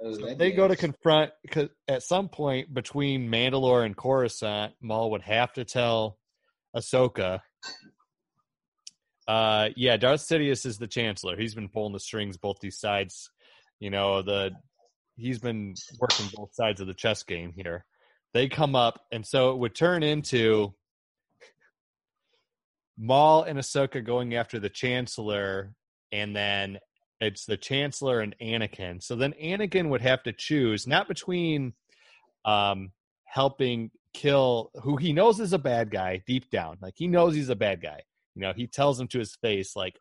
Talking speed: 160 wpm